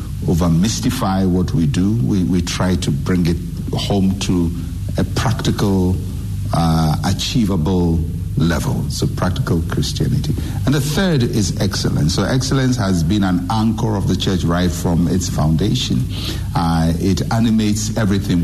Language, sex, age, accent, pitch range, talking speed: English, male, 60-79, Nigerian, 85-105 Hz, 140 wpm